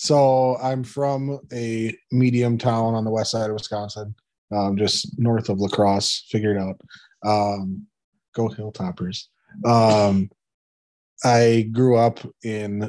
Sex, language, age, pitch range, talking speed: male, English, 30-49, 100-125 Hz, 130 wpm